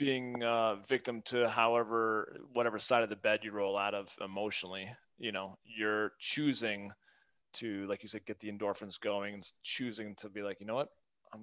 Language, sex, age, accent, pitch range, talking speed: English, male, 30-49, American, 100-125 Hz, 195 wpm